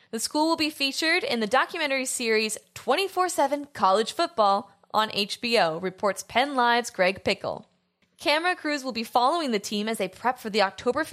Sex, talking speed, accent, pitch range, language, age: female, 180 wpm, American, 200-260 Hz, English, 10-29